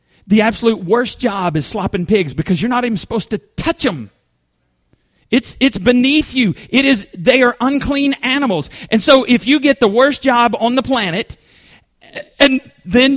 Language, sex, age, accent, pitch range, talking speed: English, male, 40-59, American, 175-245 Hz, 175 wpm